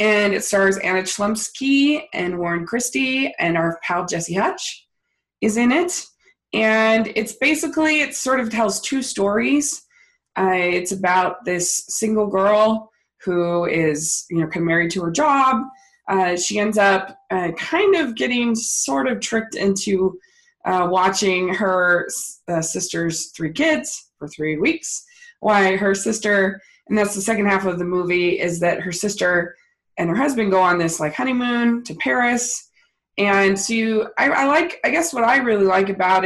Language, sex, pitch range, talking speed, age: English, female, 180-235 Hz, 165 wpm, 20-39